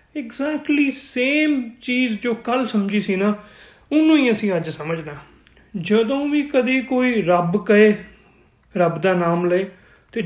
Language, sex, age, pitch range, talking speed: Punjabi, male, 30-49, 180-235 Hz, 140 wpm